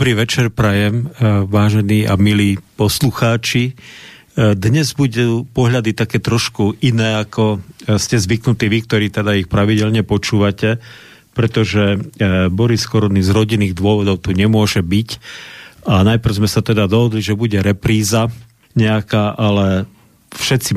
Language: Slovak